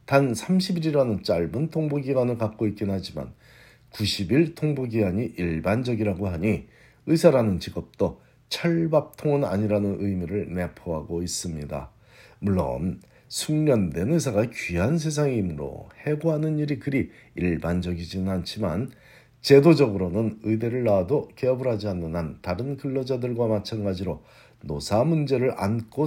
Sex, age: male, 50-69